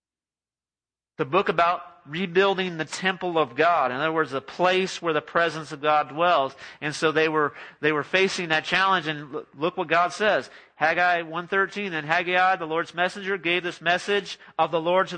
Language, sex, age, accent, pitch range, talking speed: English, male, 40-59, American, 160-195 Hz, 180 wpm